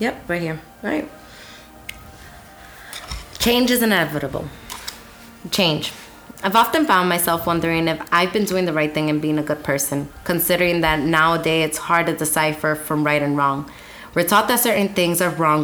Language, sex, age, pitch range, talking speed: English, female, 20-39, 150-185 Hz, 165 wpm